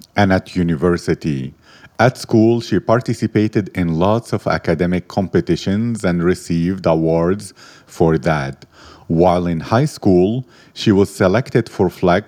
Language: English